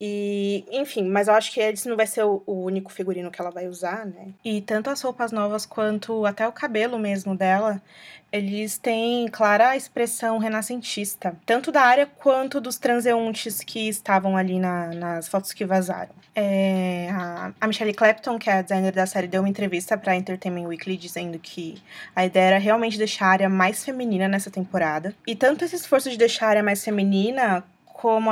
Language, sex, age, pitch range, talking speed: Portuguese, female, 20-39, 190-230 Hz, 190 wpm